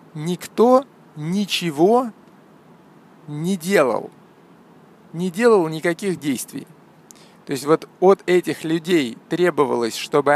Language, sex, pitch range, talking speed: Russian, male, 150-200 Hz, 95 wpm